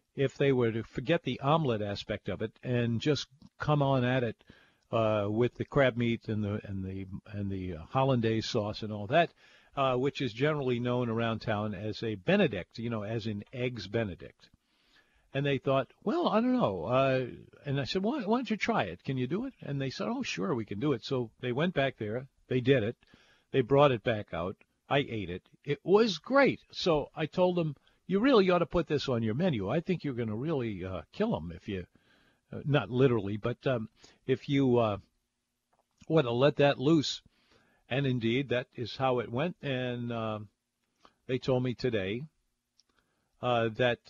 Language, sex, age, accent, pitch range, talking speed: English, male, 50-69, American, 110-140 Hz, 205 wpm